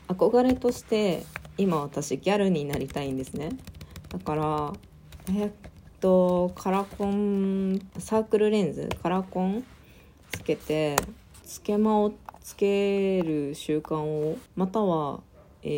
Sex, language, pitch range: female, Japanese, 145-195 Hz